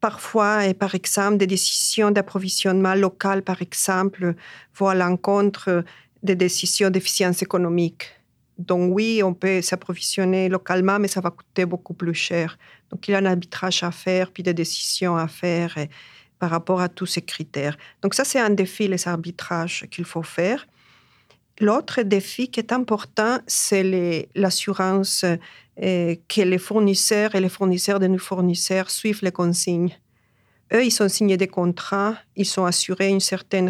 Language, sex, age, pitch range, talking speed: French, female, 50-69, 175-200 Hz, 165 wpm